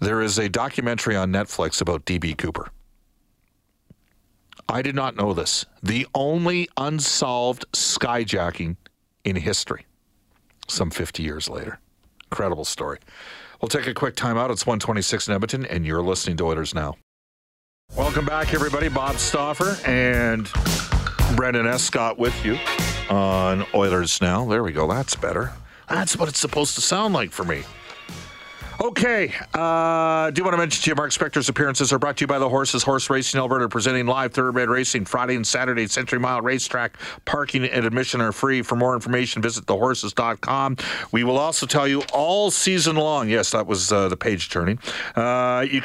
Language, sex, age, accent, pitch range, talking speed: English, male, 50-69, American, 110-140 Hz, 170 wpm